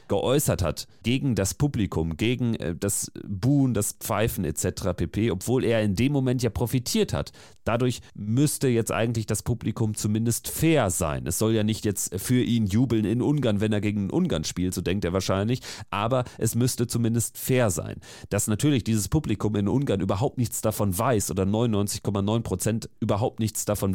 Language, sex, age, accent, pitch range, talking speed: German, male, 40-59, German, 100-120 Hz, 175 wpm